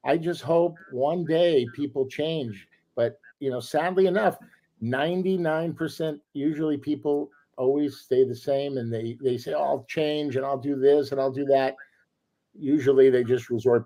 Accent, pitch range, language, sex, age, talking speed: American, 120-150 Hz, English, male, 50-69, 160 wpm